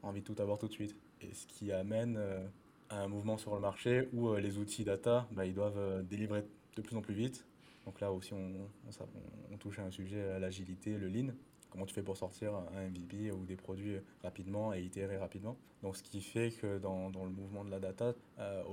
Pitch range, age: 95-105 Hz, 20-39